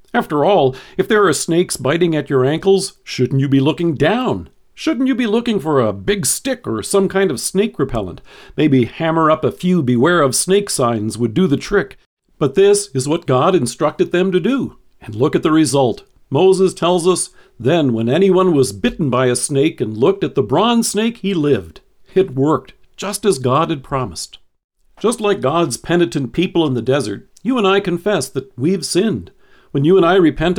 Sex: male